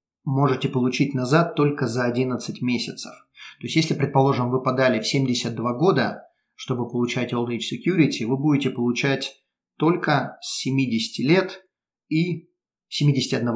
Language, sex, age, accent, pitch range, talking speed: Russian, male, 30-49, native, 125-150 Hz, 130 wpm